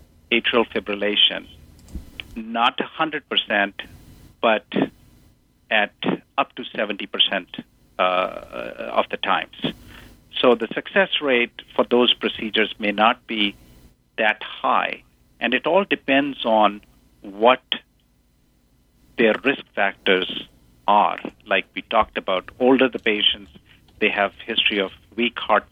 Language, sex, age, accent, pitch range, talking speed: English, male, 50-69, Indian, 95-120 Hz, 110 wpm